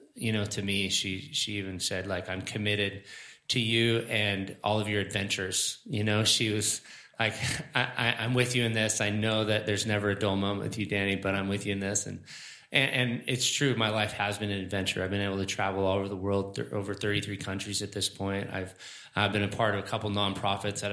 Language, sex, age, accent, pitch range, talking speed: English, male, 20-39, American, 100-115 Hz, 240 wpm